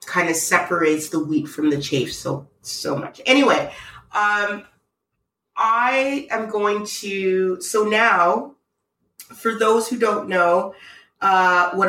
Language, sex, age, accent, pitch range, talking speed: English, female, 30-49, American, 170-210 Hz, 130 wpm